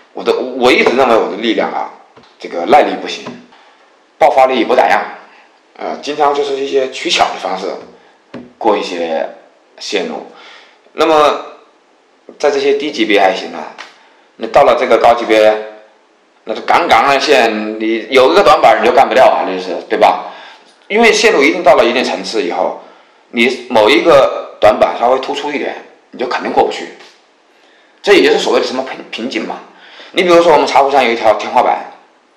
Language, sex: Chinese, male